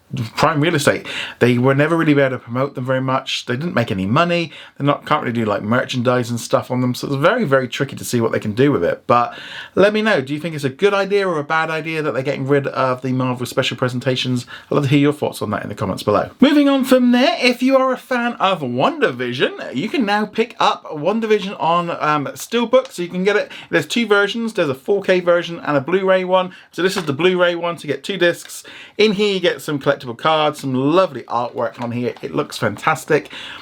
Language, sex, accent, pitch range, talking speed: English, male, British, 130-190 Hz, 250 wpm